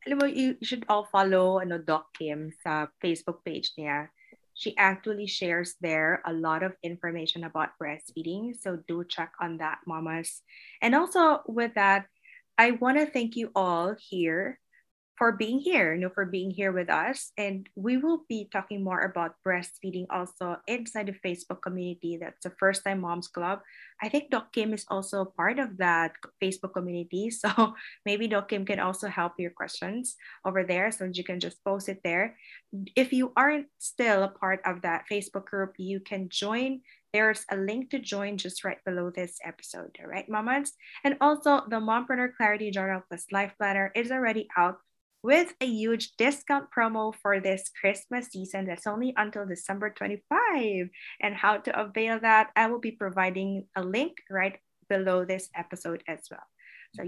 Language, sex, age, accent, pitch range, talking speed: English, female, 20-39, Filipino, 185-235 Hz, 170 wpm